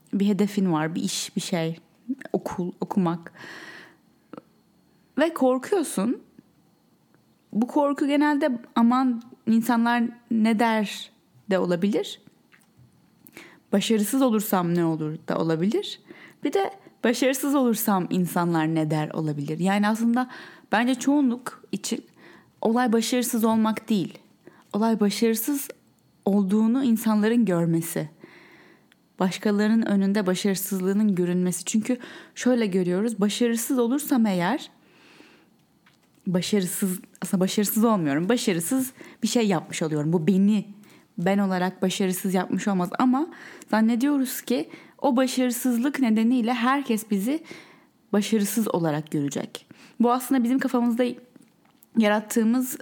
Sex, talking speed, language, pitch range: female, 100 wpm, Turkish, 195-250 Hz